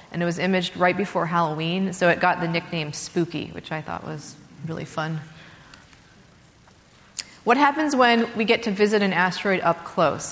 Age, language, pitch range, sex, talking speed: 30-49, English, 170-200 Hz, female, 175 wpm